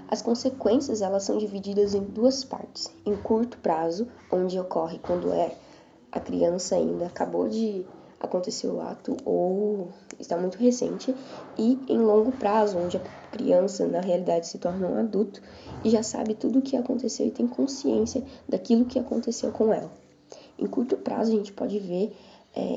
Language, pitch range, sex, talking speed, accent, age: Portuguese, 185-235 Hz, female, 165 wpm, Brazilian, 10-29